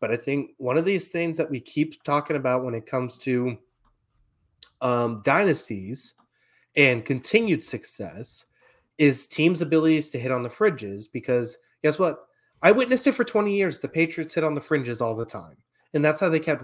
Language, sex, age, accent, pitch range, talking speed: English, male, 30-49, American, 120-160 Hz, 190 wpm